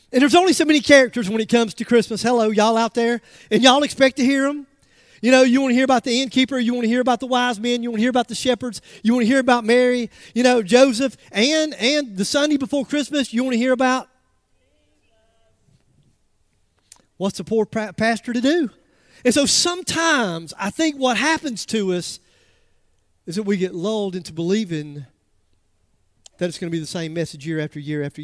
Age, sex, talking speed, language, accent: 40-59, male, 215 wpm, English, American